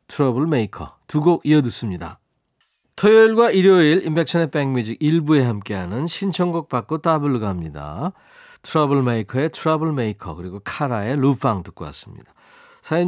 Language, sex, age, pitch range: Korean, male, 40-59, 115-165 Hz